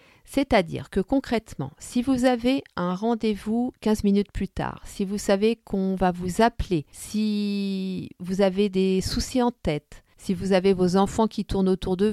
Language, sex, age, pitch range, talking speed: French, female, 40-59, 190-230 Hz, 175 wpm